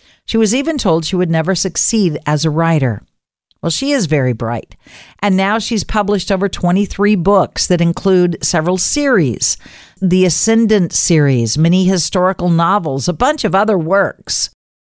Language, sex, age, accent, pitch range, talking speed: English, female, 50-69, American, 170-225 Hz, 155 wpm